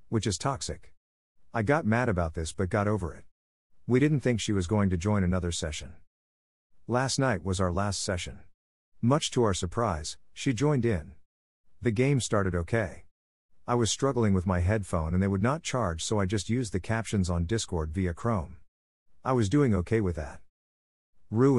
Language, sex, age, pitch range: English, male, 50-69, 85-115 Hz